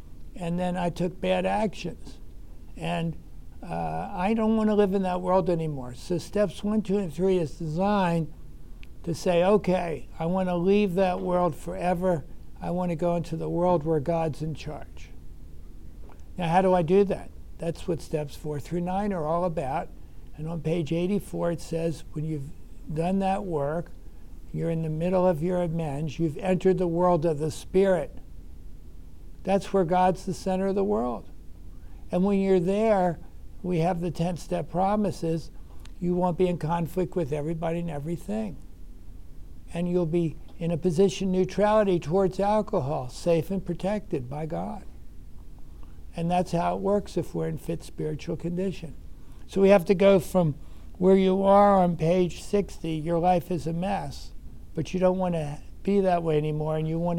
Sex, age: male, 60-79